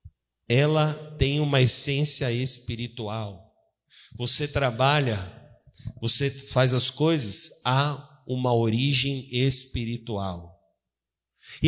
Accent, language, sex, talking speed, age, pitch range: Brazilian, Portuguese, male, 80 wpm, 50-69, 130-205 Hz